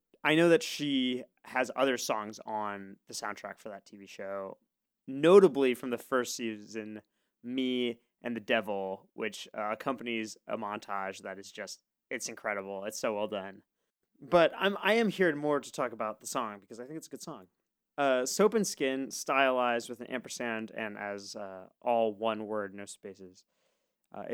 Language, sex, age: English, male, 20-39